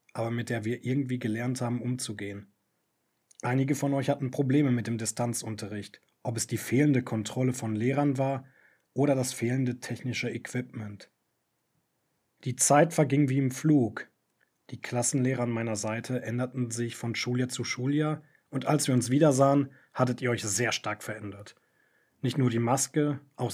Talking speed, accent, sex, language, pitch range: 160 wpm, German, male, German, 115-135 Hz